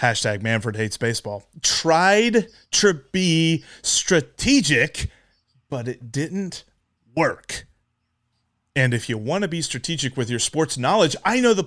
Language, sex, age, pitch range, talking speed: English, male, 30-49, 125-190 Hz, 135 wpm